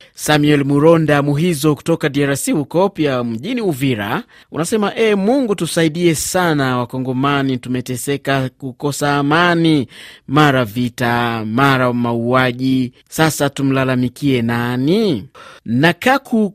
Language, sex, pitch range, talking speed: Swahili, male, 130-170 Hz, 100 wpm